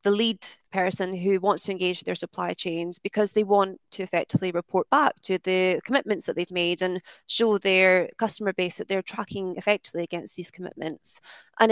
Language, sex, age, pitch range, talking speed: English, female, 20-39, 180-205 Hz, 185 wpm